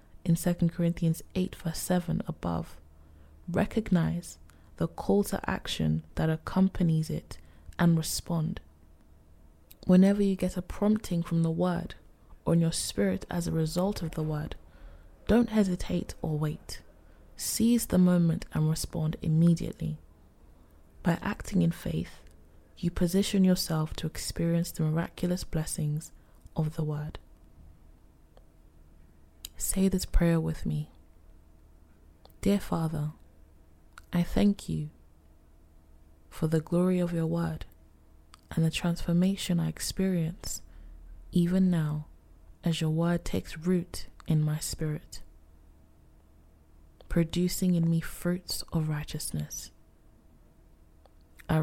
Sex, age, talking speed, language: female, 20-39, 115 wpm, English